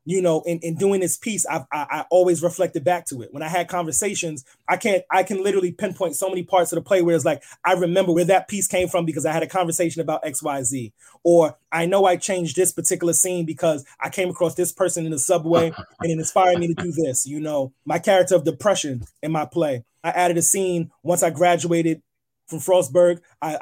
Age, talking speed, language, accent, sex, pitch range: 20-39, 235 wpm, English, American, male, 160-185 Hz